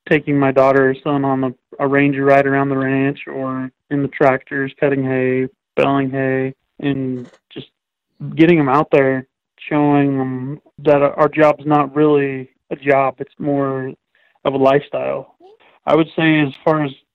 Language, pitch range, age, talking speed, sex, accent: English, 135-150 Hz, 20-39, 165 wpm, male, American